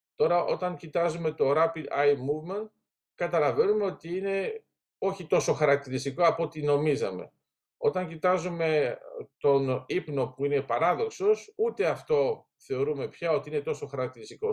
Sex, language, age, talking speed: male, Greek, 50-69, 130 wpm